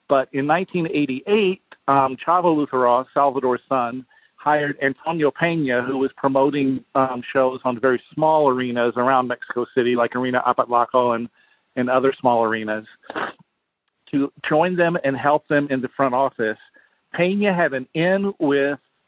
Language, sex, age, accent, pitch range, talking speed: English, male, 50-69, American, 130-150 Hz, 145 wpm